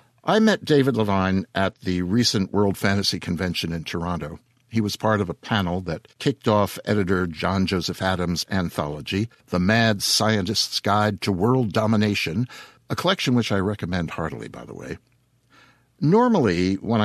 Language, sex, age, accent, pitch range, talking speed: English, male, 60-79, American, 95-120 Hz, 155 wpm